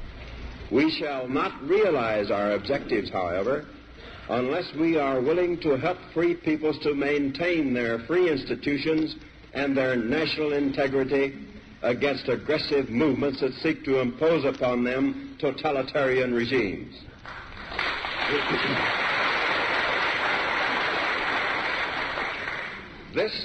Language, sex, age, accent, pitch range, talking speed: English, male, 60-79, American, 120-155 Hz, 90 wpm